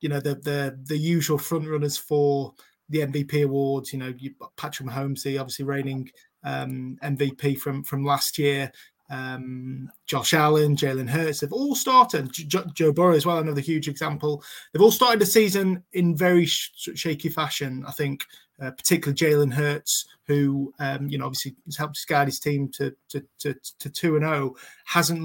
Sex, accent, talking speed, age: male, British, 180 wpm, 20-39